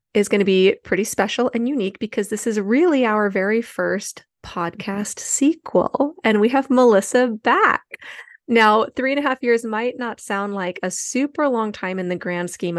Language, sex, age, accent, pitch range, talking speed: English, female, 30-49, American, 195-235 Hz, 190 wpm